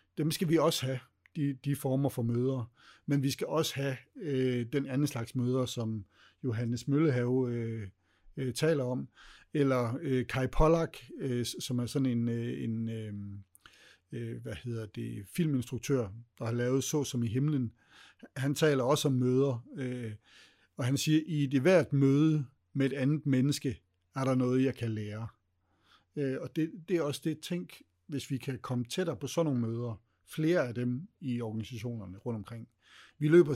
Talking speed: 175 wpm